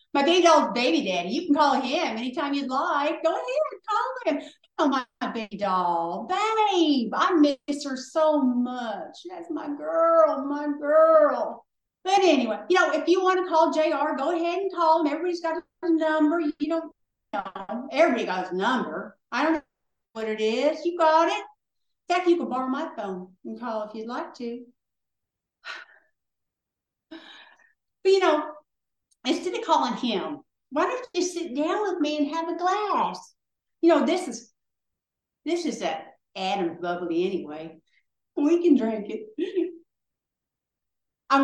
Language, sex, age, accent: English, female, 50-69, American